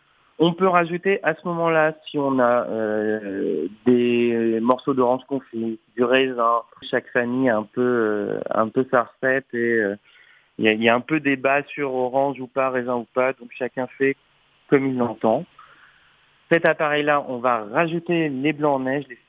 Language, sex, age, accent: French, male, 30-49, French